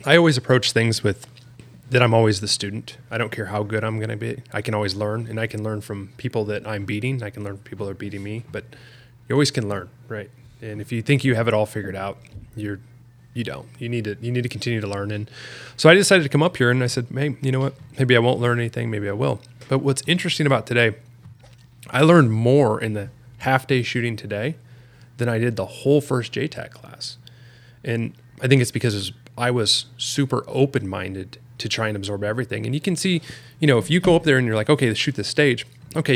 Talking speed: 245 wpm